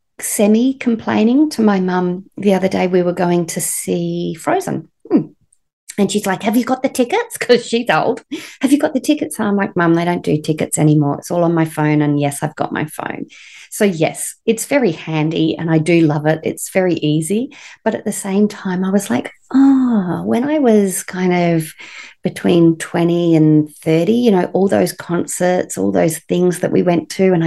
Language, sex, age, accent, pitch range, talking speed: English, female, 40-59, Australian, 160-220 Hz, 205 wpm